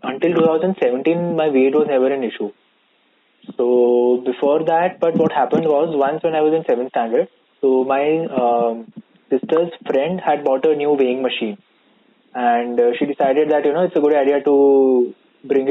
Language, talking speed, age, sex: English, 175 wpm, 20-39, male